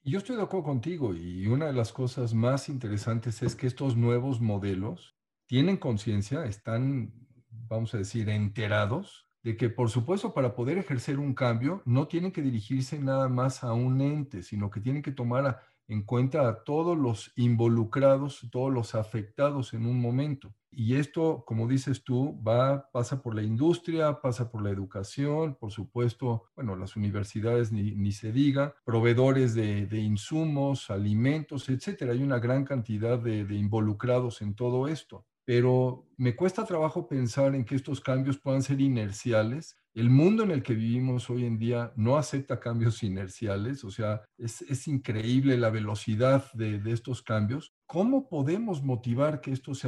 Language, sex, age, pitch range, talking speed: Spanish, male, 50-69, 115-140 Hz, 170 wpm